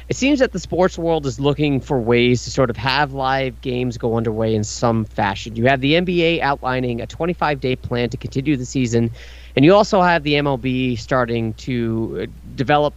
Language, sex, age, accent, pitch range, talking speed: English, male, 30-49, American, 120-150 Hz, 195 wpm